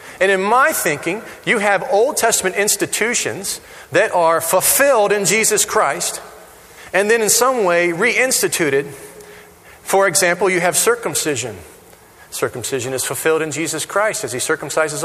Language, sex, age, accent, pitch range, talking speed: English, male, 40-59, American, 180-240 Hz, 140 wpm